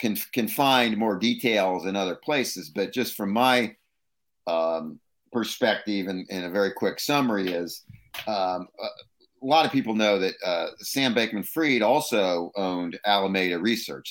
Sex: male